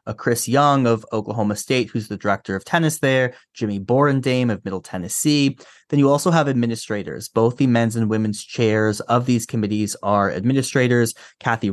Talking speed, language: 175 wpm, English